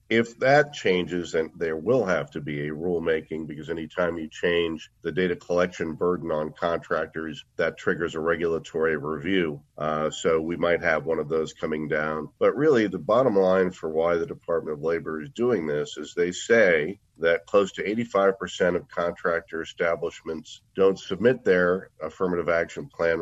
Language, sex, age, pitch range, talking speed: English, male, 50-69, 85-95 Hz, 170 wpm